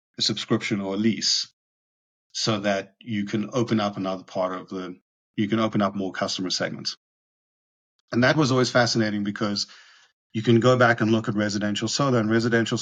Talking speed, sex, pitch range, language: 185 wpm, male, 100-120 Hz, English